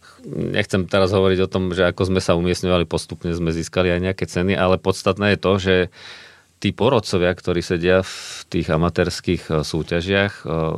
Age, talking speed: 40-59, 160 wpm